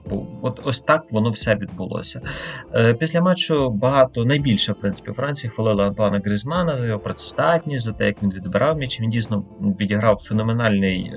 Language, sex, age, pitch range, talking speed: Ukrainian, male, 30-49, 100-135 Hz, 155 wpm